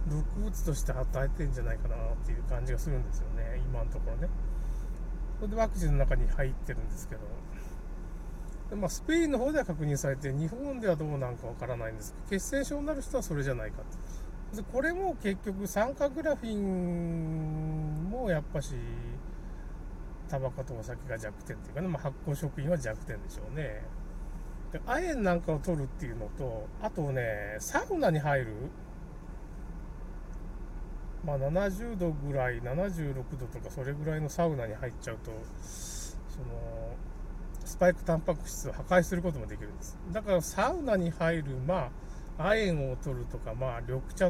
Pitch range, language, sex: 125-180 Hz, Japanese, male